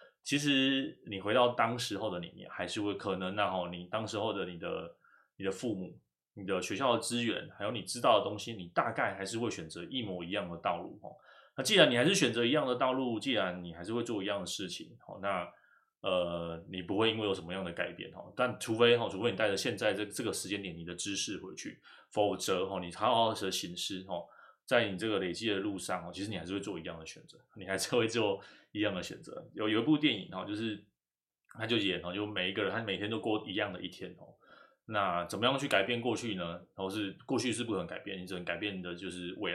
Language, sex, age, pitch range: Chinese, male, 20-39, 90-115 Hz